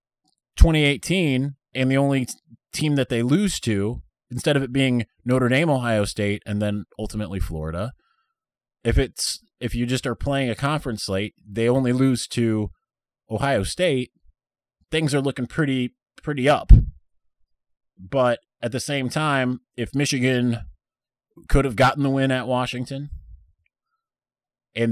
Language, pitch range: English, 110-145 Hz